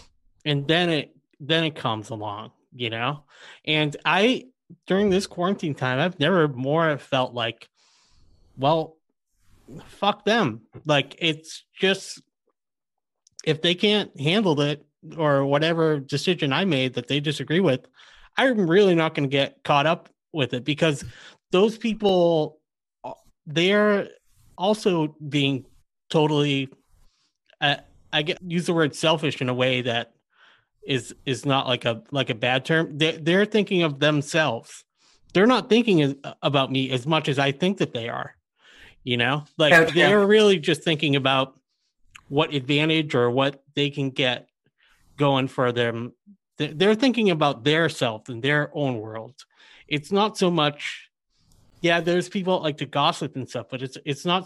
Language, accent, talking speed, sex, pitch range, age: English, American, 155 wpm, male, 130-170 Hz, 30-49